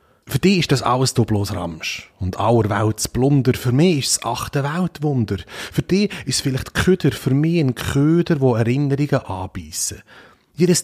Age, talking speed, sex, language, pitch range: 30-49, 165 wpm, male, German, 105-145 Hz